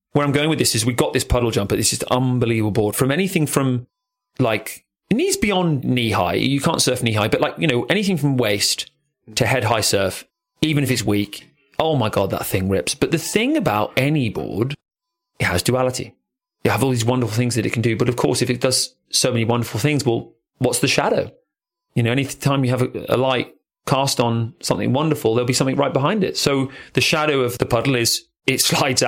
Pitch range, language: 115-150 Hz, English